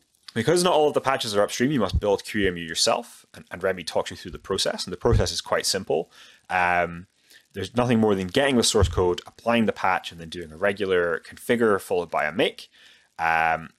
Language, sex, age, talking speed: English, male, 30-49, 220 wpm